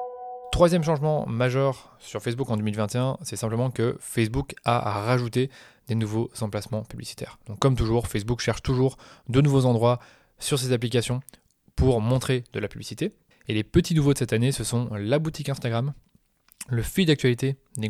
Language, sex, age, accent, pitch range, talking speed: French, male, 20-39, French, 115-140 Hz, 170 wpm